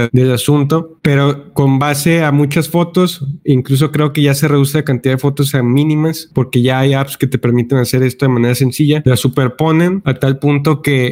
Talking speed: 205 wpm